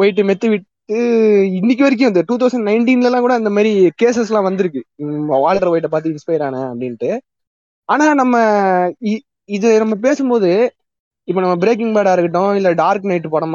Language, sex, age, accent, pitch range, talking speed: Tamil, male, 20-39, native, 165-220 Hz, 55 wpm